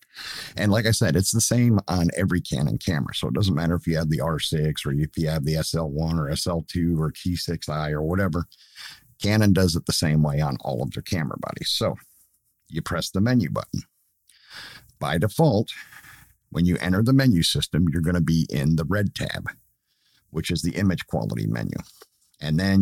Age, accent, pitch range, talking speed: 50-69, American, 80-100 Hz, 200 wpm